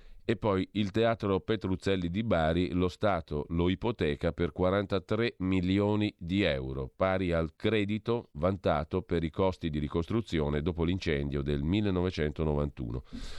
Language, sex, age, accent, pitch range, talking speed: Italian, male, 40-59, native, 80-95 Hz, 130 wpm